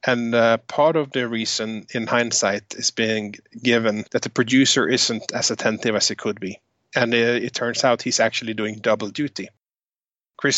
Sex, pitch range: male, 110-130 Hz